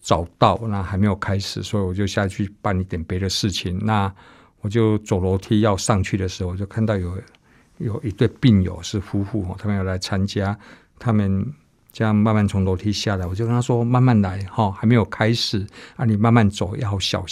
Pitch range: 100-135 Hz